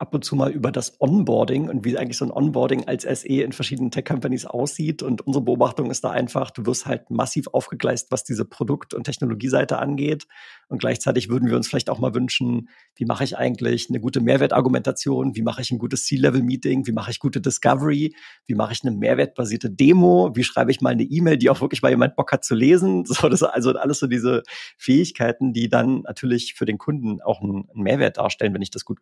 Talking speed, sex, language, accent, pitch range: 215 wpm, male, German, German, 115-140 Hz